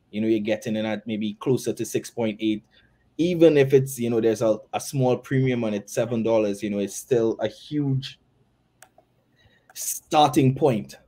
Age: 20-39